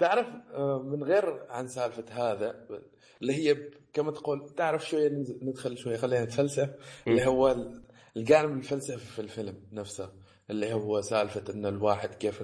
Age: 20-39